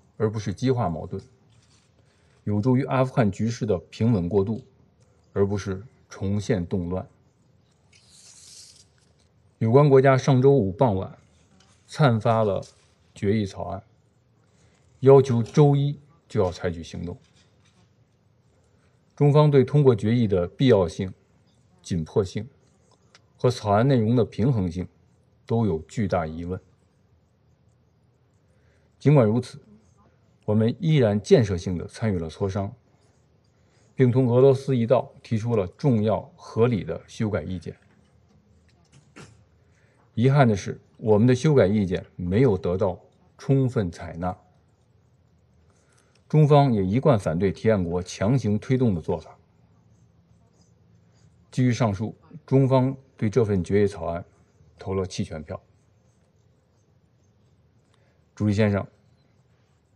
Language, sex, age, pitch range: English, male, 50-69, 100-130 Hz